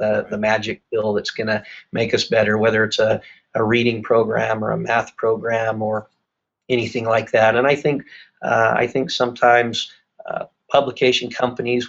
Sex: male